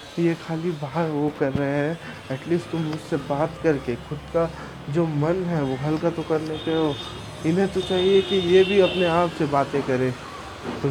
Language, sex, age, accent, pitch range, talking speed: Hindi, male, 20-39, native, 135-170 Hz, 195 wpm